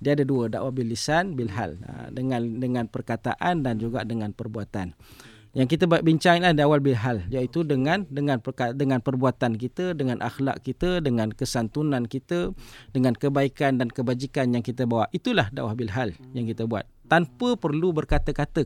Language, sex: English, male